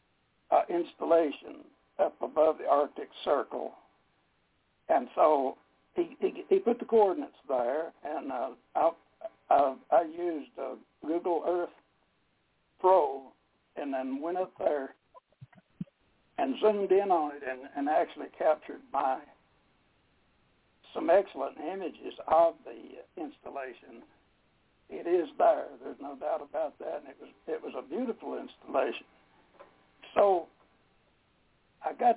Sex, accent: male, American